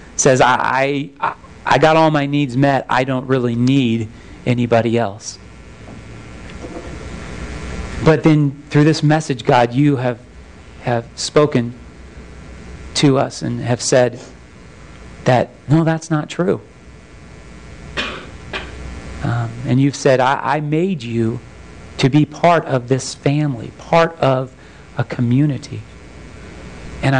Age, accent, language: 40-59, American, English